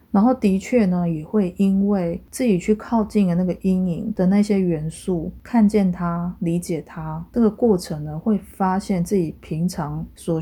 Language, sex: Chinese, female